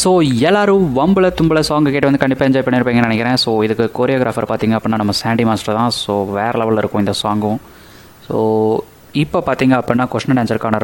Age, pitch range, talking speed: 20-39, 115-140 Hz, 170 wpm